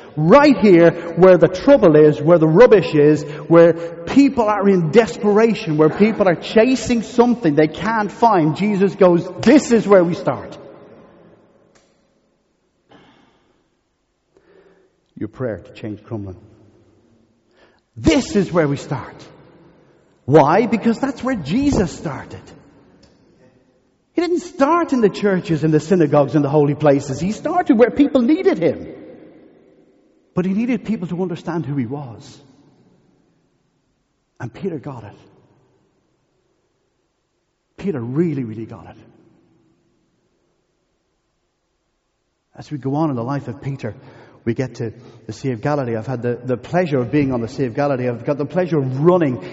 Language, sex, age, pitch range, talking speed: English, male, 50-69, 135-205 Hz, 140 wpm